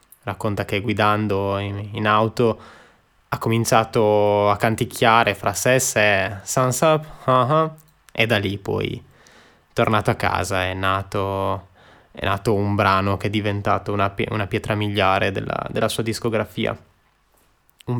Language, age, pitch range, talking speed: Italian, 20-39, 100-115 Hz, 140 wpm